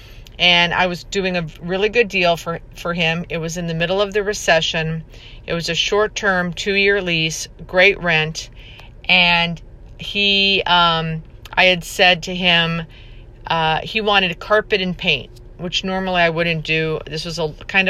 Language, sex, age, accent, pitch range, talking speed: English, female, 50-69, American, 155-185 Hz, 175 wpm